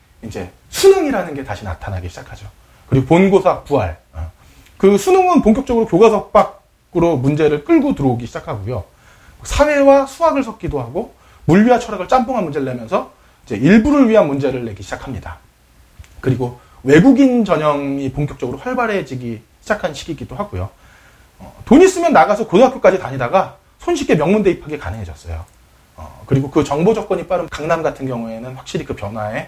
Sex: male